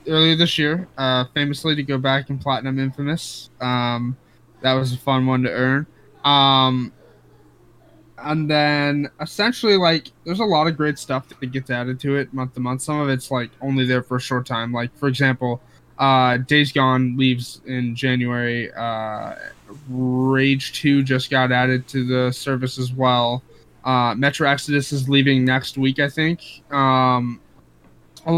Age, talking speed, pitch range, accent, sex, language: 10-29, 165 wpm, 125-150 Hz, American, male, English